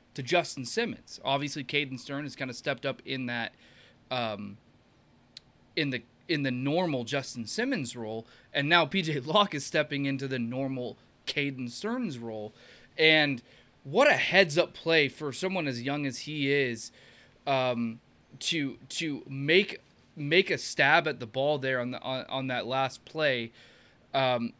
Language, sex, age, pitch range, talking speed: English, male, 20-39, 125-145 Hz, 160 wpm